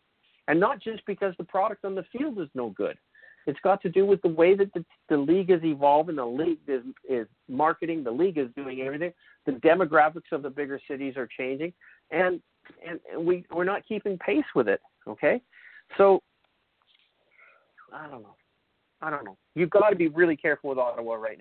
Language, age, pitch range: English, 50-69, 140-185 Hz